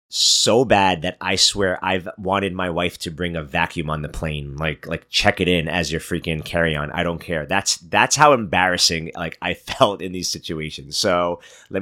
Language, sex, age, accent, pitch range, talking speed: English, male, 30-49, American, 85-110 Hz, 205 wpm